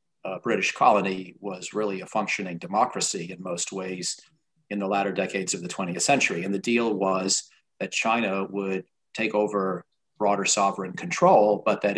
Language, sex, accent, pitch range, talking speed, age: English, male, American, 95-105 Hz, 165 wpm, 40-59